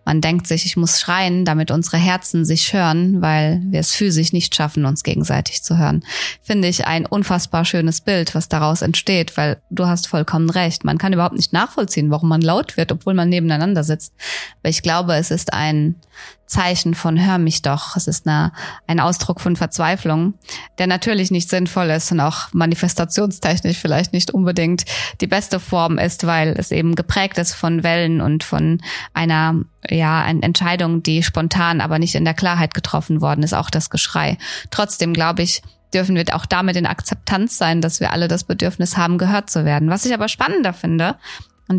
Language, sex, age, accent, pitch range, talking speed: German, female, 20-39, German, 160-185 Hz, 185 wpm